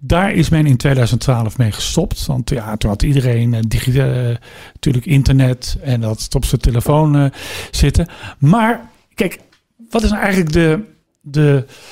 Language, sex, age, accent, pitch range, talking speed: Dutch, male, 50-69, Dutch, 130-175 Hz, 155 wpm